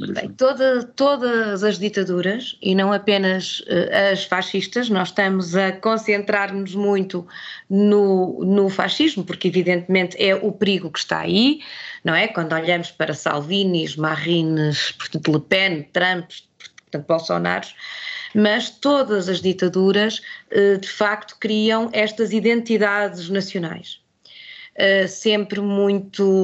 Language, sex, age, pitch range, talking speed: Portuguese, female, 20-39, 185-225 Hz, 120 wpm